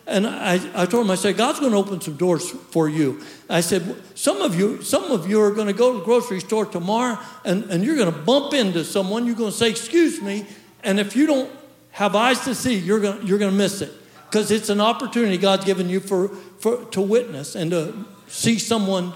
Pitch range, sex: 205-285 Hz, male